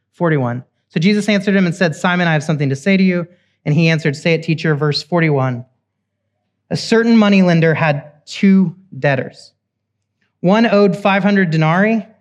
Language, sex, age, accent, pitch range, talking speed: English, male, 30-49, American, 130-195 Hz, 160 wpm